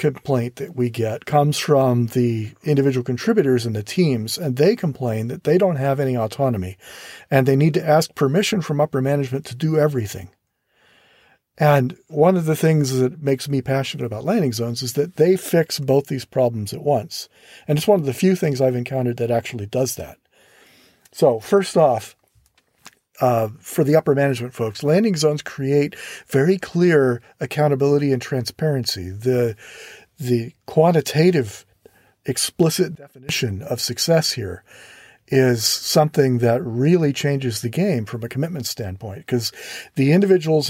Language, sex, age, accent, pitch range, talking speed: English, male, 40-59, American, 125-155 Hz, 155 wpm